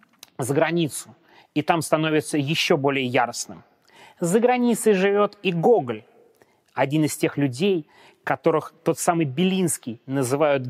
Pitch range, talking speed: 135-170 Hz, 125 wpm